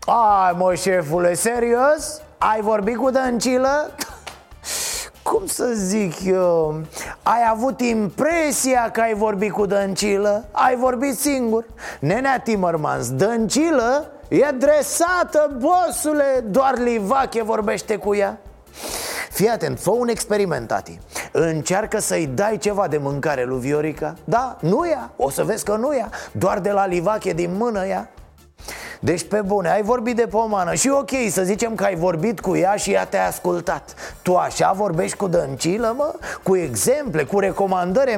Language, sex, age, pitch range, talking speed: Romanian, male, 30-49, 185-265 Hz, 145 wpm